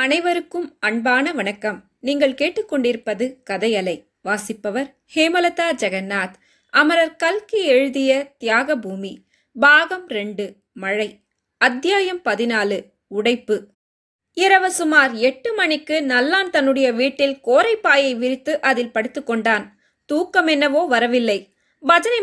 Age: 20-39